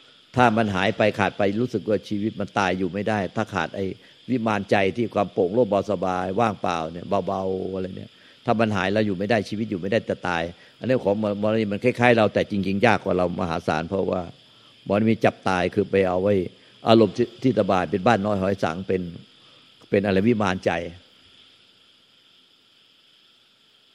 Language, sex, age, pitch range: Thai, male, 60-79, 95-120 Hz